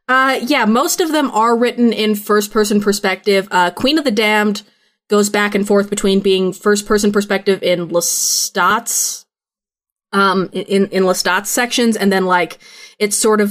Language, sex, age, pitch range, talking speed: English, female, 20-39, 180-215 Hz, 160 wpm